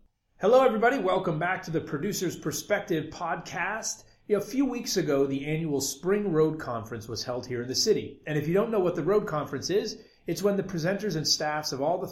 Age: 30-49